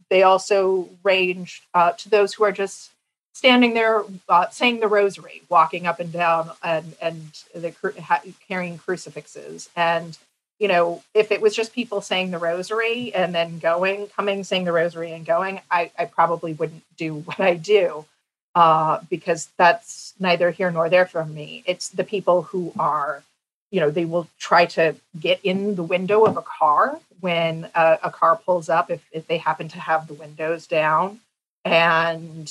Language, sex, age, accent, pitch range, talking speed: English, female, 30-49, American, 165-195 Hz, 175 wpm